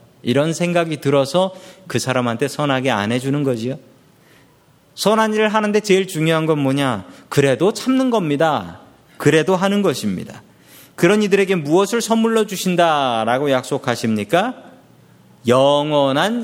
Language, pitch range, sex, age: Korean, 130-195 Hz, male, 40-59